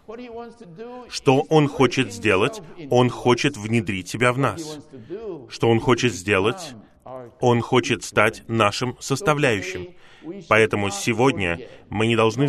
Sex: male